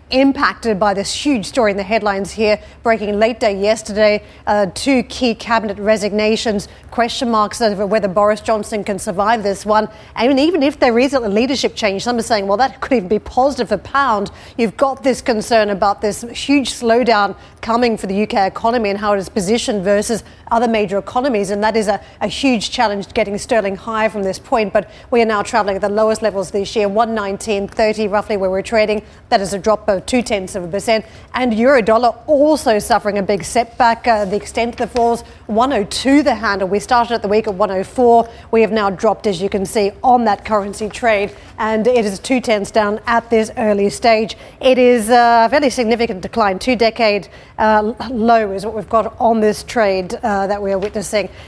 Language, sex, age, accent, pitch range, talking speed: English, female, 40-59, Australian, 210-240 Hz, 205 wpm